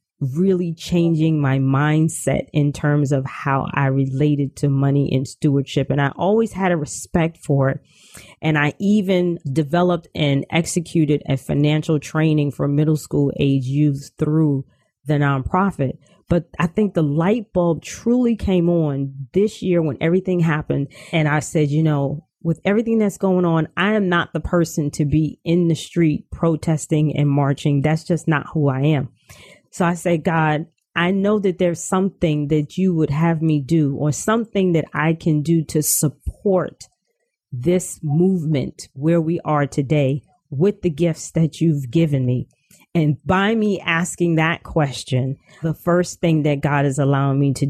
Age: 30-49